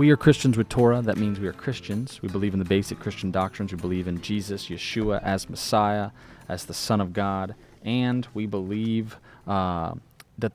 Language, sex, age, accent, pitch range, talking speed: English, male, 20-39, American, 95-120 Hz, 195 wpm